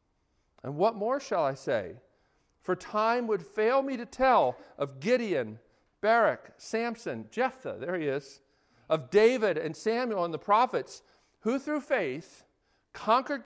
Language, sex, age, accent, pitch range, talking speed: English, male, 50-69, American, 145-220 Hz, 145 wpm